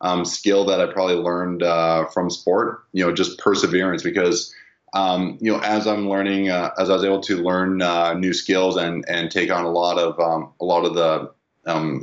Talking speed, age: 215 wpm, 20-39